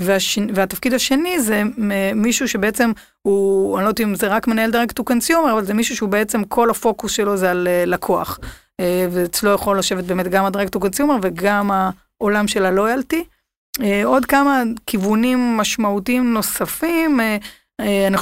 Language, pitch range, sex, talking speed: Hebrew, 190-230 Hz, female, 140 wpm